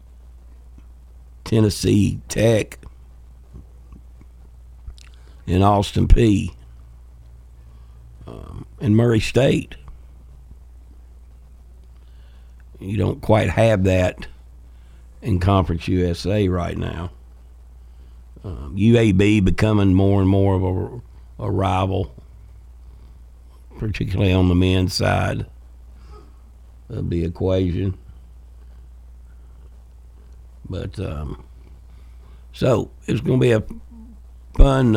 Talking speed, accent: 80 wpm, American